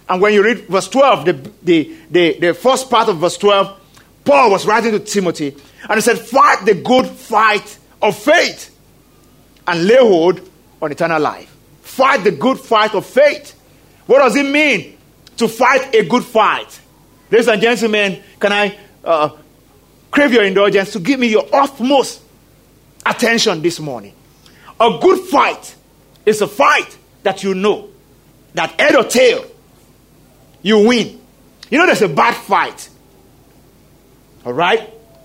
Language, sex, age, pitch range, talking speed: English, male, 40-59, 165-235 Hz, 150 wpm